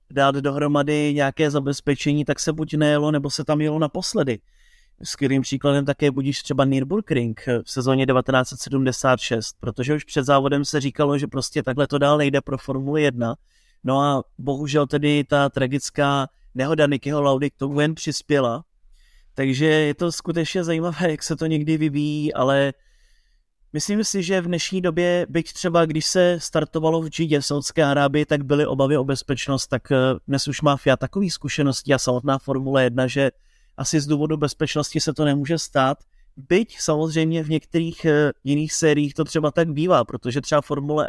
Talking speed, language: 170 wpm, Czech